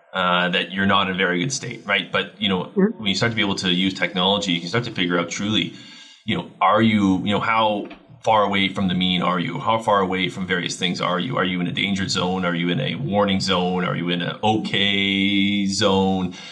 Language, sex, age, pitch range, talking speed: English, male, 30-49, 90-115 Hz, 250 wpm